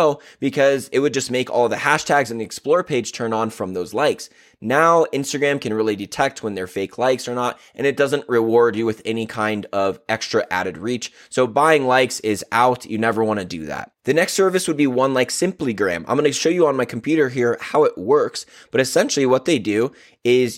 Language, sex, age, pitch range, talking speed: English, male, 20-39, 110-150 Hz, 225 wpm